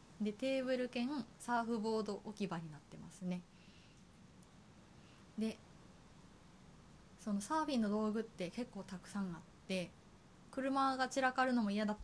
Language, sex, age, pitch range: Japanese, female, 20-39, 180-230 Hz